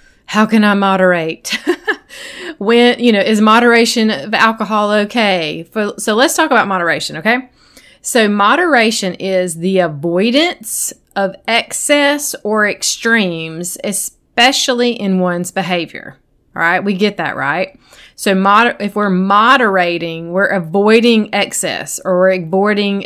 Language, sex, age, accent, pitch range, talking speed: English, female, 30-49, American, 185-250 Hz, 120 wpm